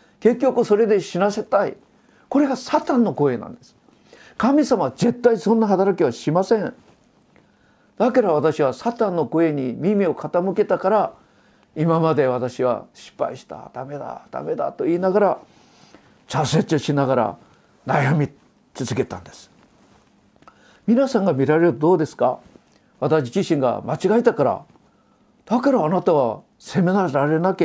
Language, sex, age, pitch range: Japanese, male, 50-69, 150-225 Hz